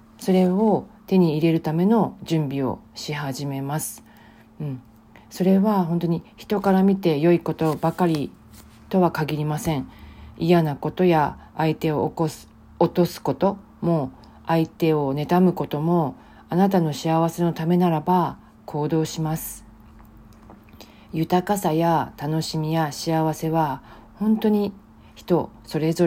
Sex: female